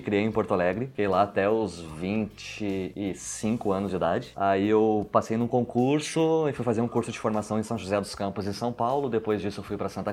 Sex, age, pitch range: male, 20-39, 100-125 Hz